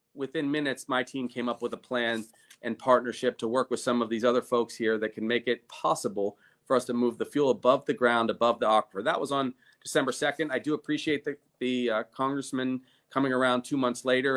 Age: 40-59